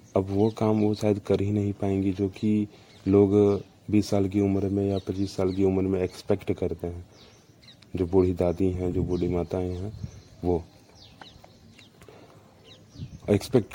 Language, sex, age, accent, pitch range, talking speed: English, male, 30-49, Indian, 90-105 Hz, 155 wpm